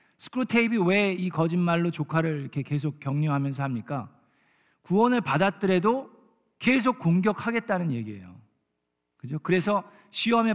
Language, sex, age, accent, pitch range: Korean, male, 40-59, native, 150-215 Hz